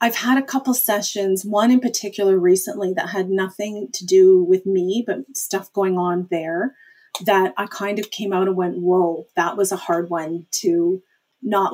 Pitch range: 185-235 Hz